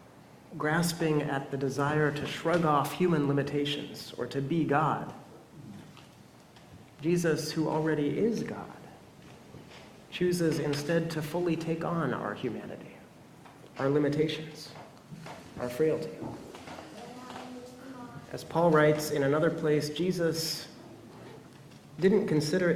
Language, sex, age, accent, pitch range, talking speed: English, male, 30-49, American, 130-160 Hz, 105 wpm